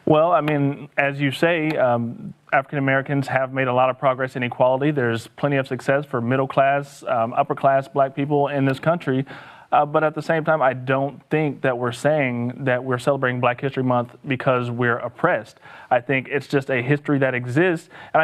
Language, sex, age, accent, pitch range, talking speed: English, male, 30-49, American, 130-145 Hz, 205 wpm